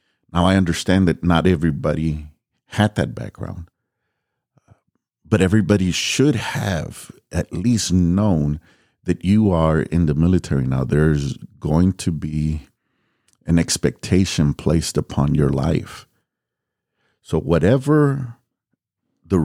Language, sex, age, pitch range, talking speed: English, male, 50-69, 75-95 Hz, 110 wpm